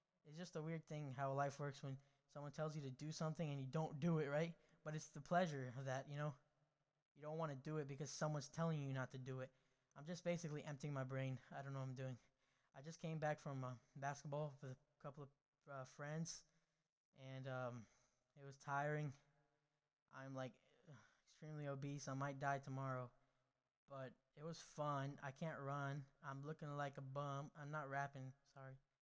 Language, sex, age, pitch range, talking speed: English, male, 10-29, 140-160 Hz, 205 wpm